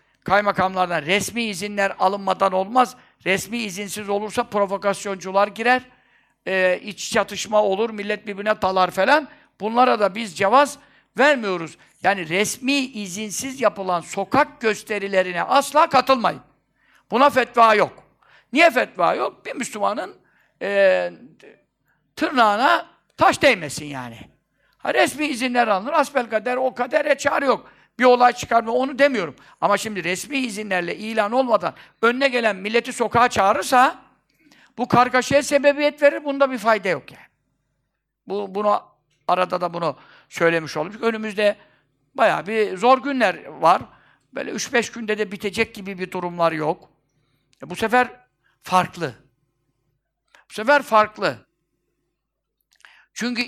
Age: 50-69